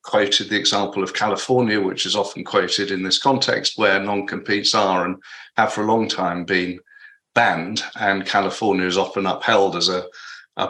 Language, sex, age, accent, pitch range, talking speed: English, male, 50-69, British, 100-120 Hz, 175 wpm